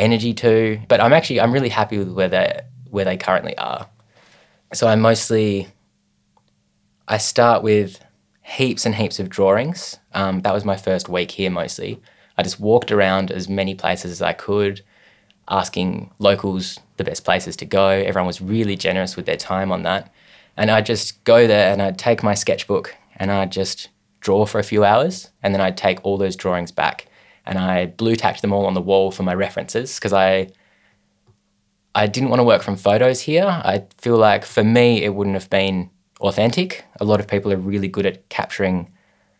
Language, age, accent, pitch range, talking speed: English, 20-39, Australian, 95-110 Hz, 190 wpm